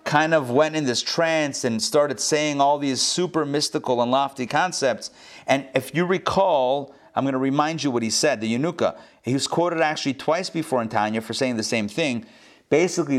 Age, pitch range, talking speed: 40-59, 125-160 Hz, 200 wpm